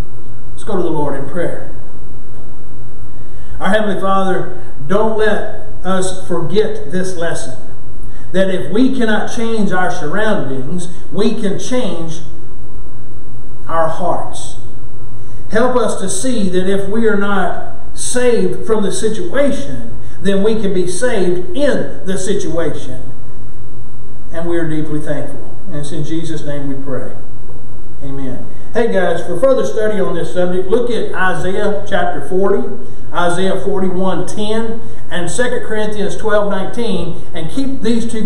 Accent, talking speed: American, 130 wpm